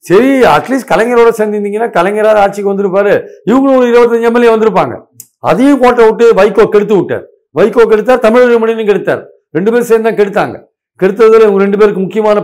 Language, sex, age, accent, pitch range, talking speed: Tamil, male, 50-69, native, 185-230 Hz, 165 wpm